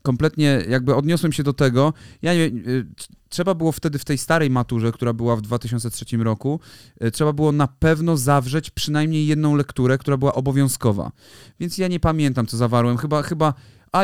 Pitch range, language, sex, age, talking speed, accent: 120-160 Hz, Polish, male, 30-49, 170 wpm, native